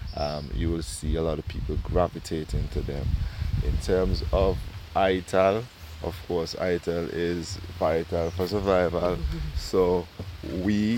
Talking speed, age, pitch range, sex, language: 130 wpm, 20-39, 85-95 Hz, male, English